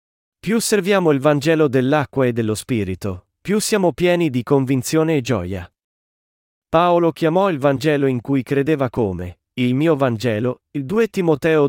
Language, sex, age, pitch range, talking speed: Italian, male, 40-59, 125-165 Hz, 150 wpm